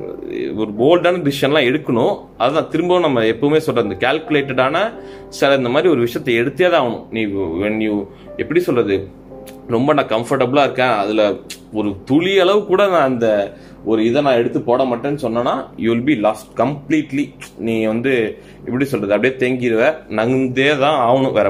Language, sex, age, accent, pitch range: Tamil, male, 20-39, native, 110-150 Hz